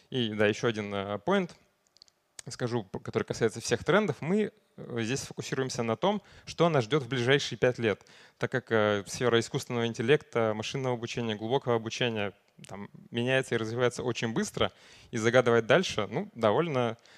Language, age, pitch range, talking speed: Russian, 20-39, 115-145 Hz, 145 wpm